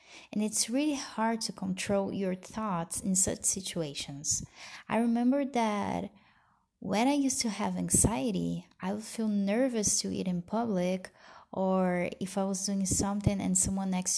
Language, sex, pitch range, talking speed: English, female, 185-220 Hz, 155 wpm